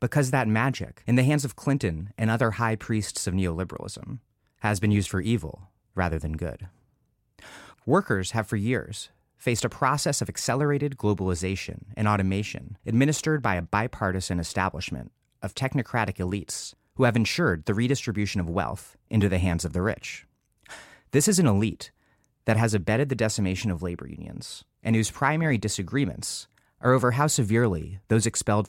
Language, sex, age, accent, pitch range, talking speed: English, male, 30-49, American, 95-125 Hz, 160 wpm